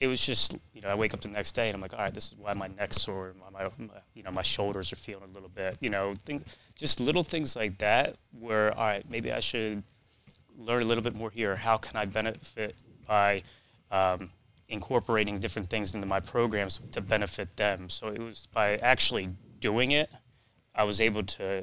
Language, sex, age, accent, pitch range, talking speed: English, male, 20-39, American, 100-115 Hz, 220 wpm